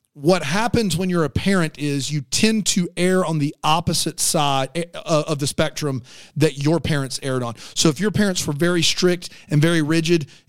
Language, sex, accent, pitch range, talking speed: English, male, American, 155-210 Hz, 190 wpm